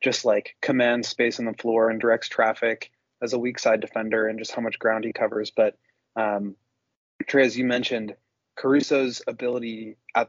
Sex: male